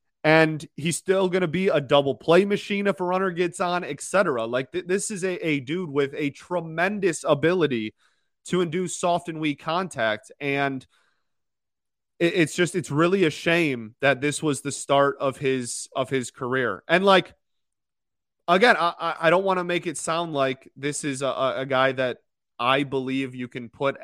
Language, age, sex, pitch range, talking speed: English, 30-49, male, 130-170 Hz, 185 wpm